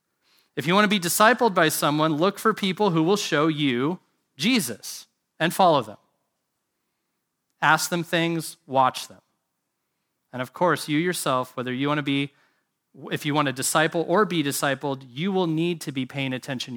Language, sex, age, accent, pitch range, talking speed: English, male, 30-49, American, 135-175 Hz, 175 wpm